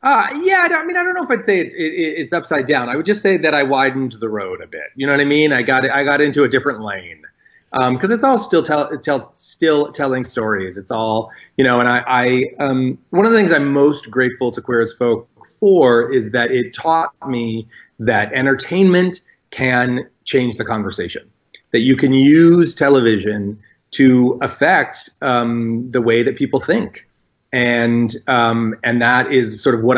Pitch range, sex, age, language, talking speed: 115-150 Hz, male, 30-49, English, 200 wpm